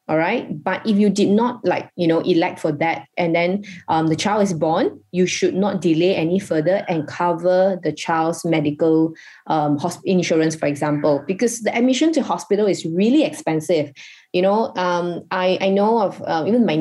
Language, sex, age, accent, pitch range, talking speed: English, female, 20-39, Malaysian, 165-200 Hz, 190 wpm